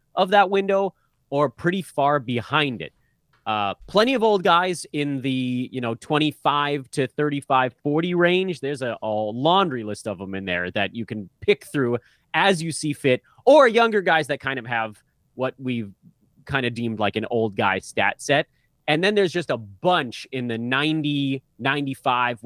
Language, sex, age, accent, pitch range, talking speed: English, male, 30-49, American, 120-165 Hz, 180 wpm